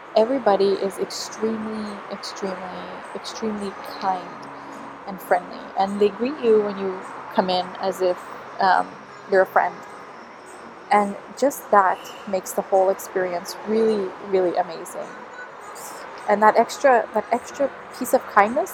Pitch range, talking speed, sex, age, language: 190-245 Hz, 130 wpm, female, 20-39, English